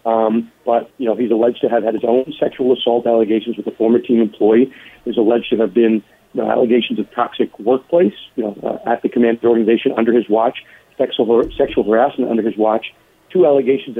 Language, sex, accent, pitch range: English, male, American, 115-135 Hz